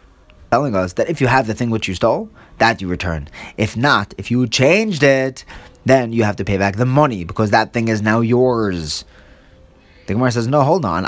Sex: male